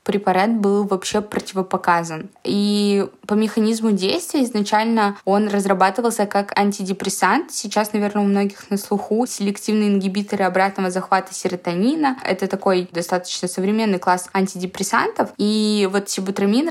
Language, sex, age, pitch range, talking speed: Russian, female, 20-39, 195-215 Hz, 120 wpm